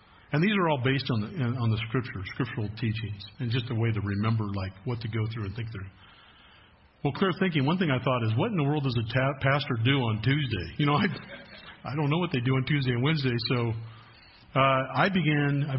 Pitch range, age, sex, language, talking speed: 110-135 Hz, 50-69, male, English, 240 wpm